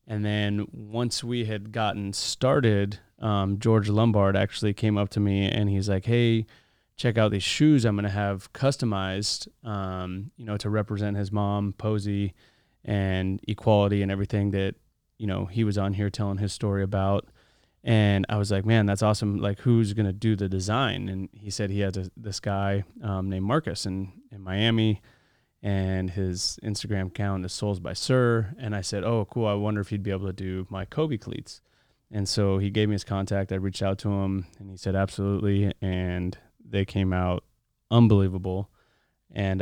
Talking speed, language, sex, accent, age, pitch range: 185 wpm, English, male, American, 30-49, 95-110 Hz